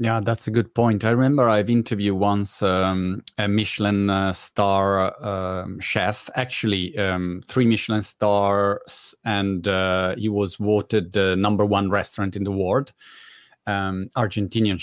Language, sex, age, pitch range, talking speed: Italian, male, 30-49, 100-120 Hz, 145 wpm